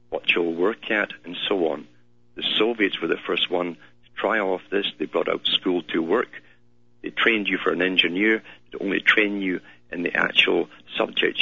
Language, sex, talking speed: English, male, 195 wpm